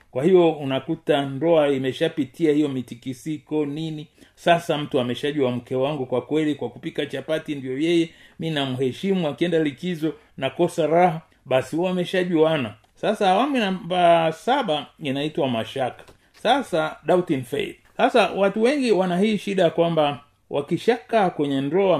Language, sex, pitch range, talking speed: Swahili, male, 130-170 Hz, 145 wpm